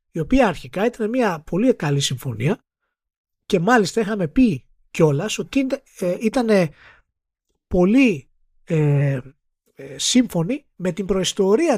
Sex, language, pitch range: male, Greek, 140-230 Hz